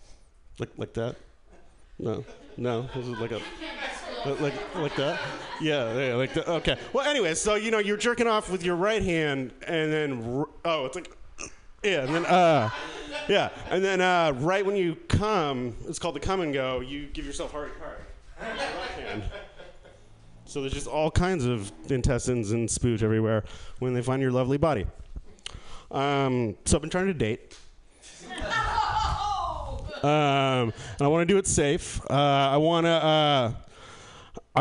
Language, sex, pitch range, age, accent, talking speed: English, male, 120-170 Hz, 30-49, American, 165 wpm